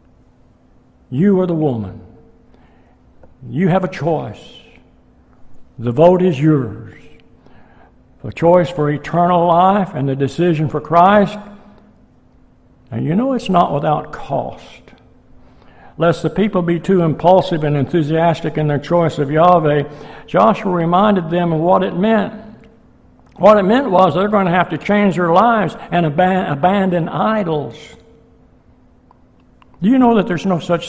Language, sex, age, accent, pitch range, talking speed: English, male, 60-79, American, 145-195 Hz, 140 wpm